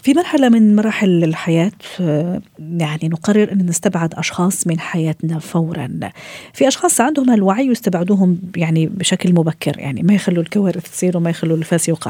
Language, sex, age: Arabic, female, 40-59